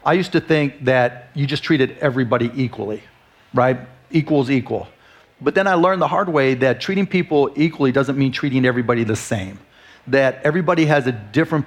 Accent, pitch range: American, 130-155 Hz